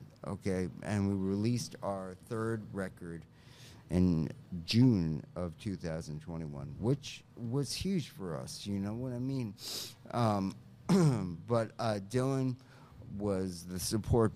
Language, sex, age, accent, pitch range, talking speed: French, male, 50-69, American, 90-115 Hz, 115 wpm